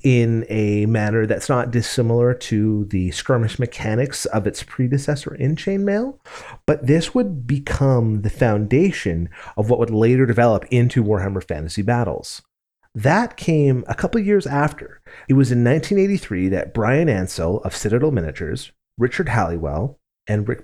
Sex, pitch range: male, 105-140 Hz